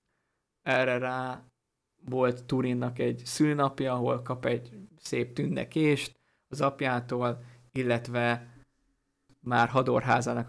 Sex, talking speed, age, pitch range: male, 90 wpm, 20-39, 120-135 Hz